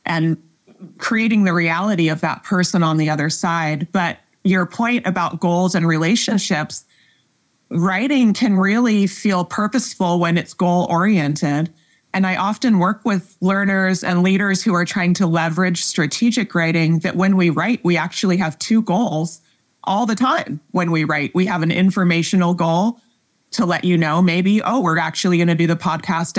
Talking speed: 170 wpm